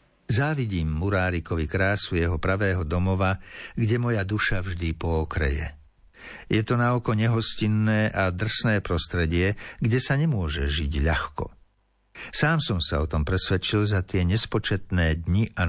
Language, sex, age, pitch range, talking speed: Slovak, male, 60-79, 90-115 Hz, 130 wpm